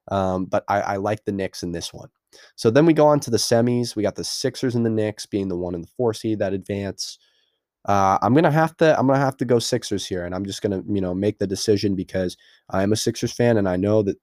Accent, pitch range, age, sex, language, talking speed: American, 95-115 Hz, 20-39, male, English, 275 wpm